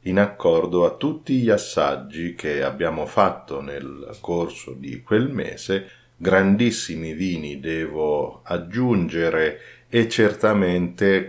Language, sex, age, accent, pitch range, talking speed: Italian, male, 50-69, native, 85-100 Hz, 105 wpm